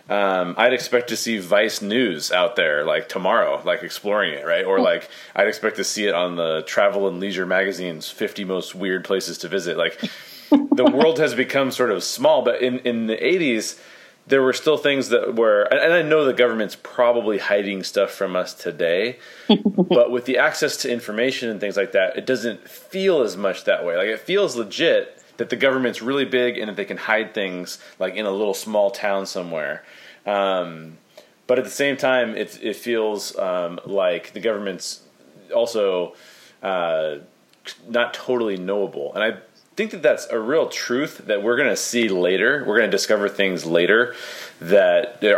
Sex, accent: male, American